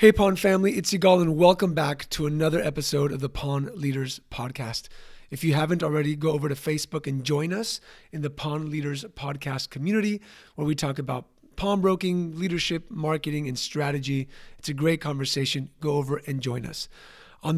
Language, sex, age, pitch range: English, male, 30-49, 140-175 Hz